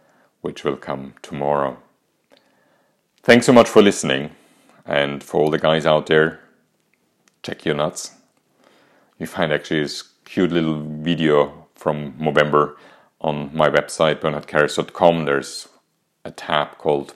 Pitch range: 70-85 Hz